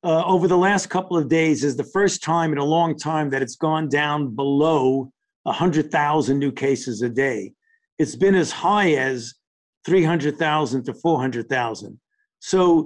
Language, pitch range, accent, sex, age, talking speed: English, 150-190 Hz, American, male, 50-69, 160 wpm